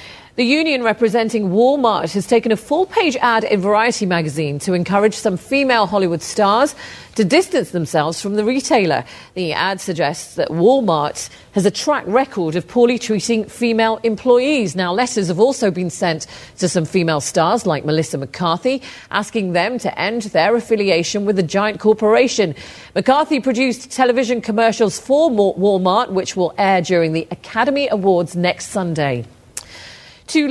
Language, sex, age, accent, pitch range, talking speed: English, female, 40-59, British, 170-235 Hz, 150 wpm